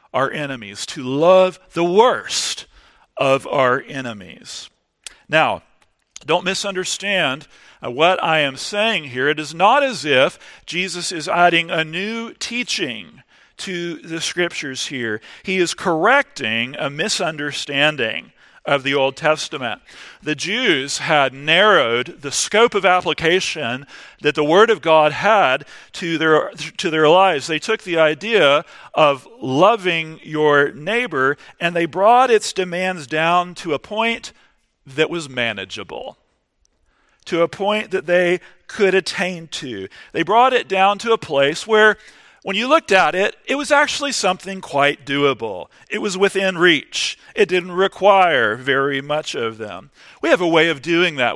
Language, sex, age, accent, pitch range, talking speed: English, male, 40-59, American, 145-200 Hz, 145 wpm